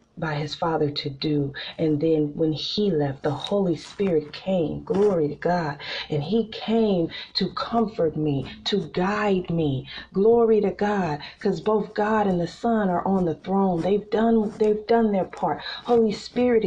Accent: American